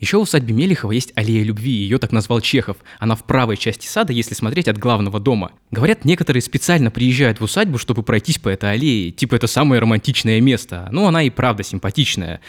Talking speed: 205 wpm